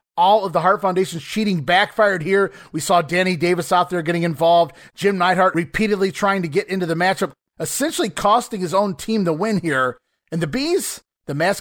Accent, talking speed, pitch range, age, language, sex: American, 195 wpm, 155-200 Hz, 30-49, English, male